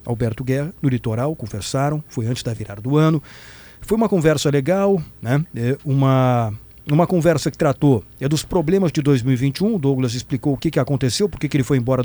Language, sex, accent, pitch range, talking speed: Portuguese, male, Brazilian, 130-185 Hz, 180 wpm